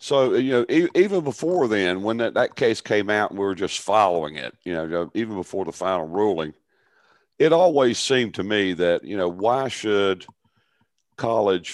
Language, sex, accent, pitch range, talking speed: English, male, American, 90-115 Hz, 185 wpm